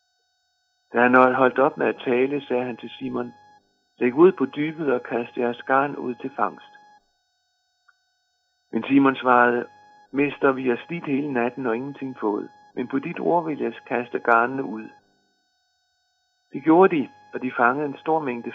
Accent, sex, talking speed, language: native, male, 170 wpm, Danish